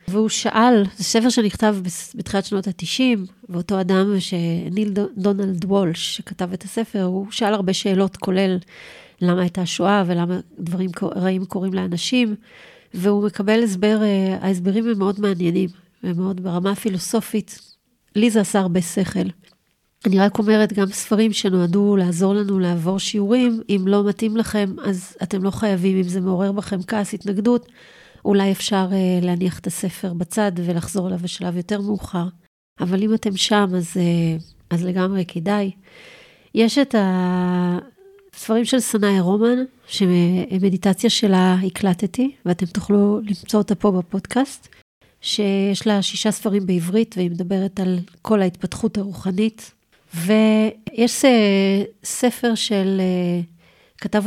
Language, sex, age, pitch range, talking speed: Hebrew, female, 40-59, 185-215 Hz, 130 wpm